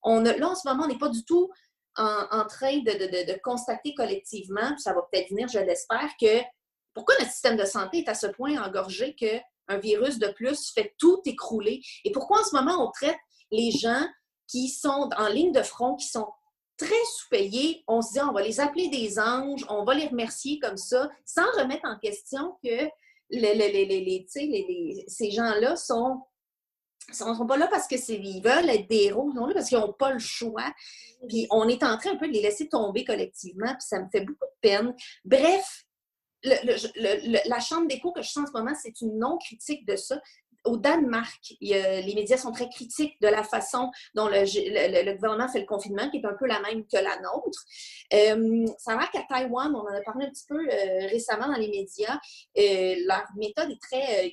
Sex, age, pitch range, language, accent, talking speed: female, 30-49, 215-300 Hz, French, Canadian, 225 wpm